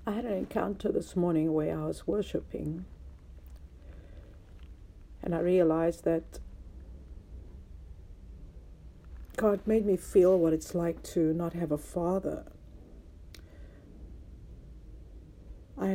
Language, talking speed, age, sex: English, 100 wpm, 60-79, female